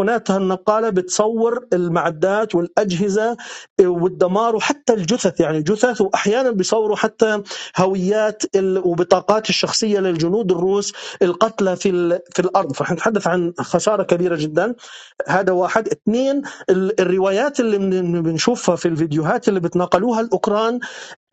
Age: 40-59